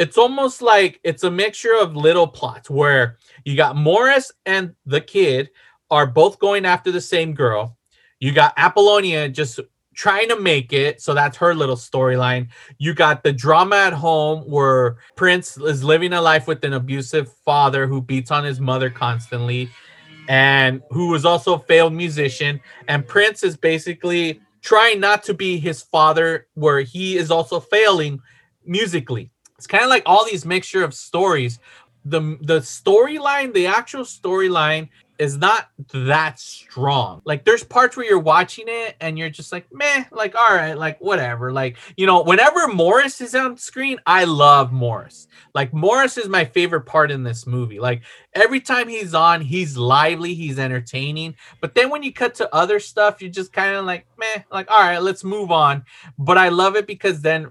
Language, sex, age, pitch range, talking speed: English, male, 30-49, 140-195 Hz, 180 wpm